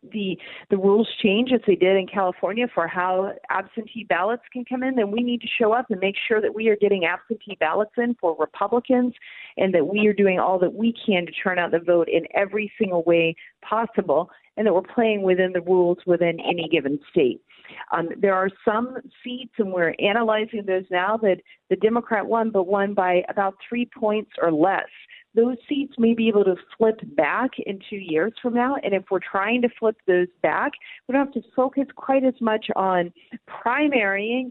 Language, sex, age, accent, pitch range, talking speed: English, female, 40-59, American, 185-230 Hz, 205 wpm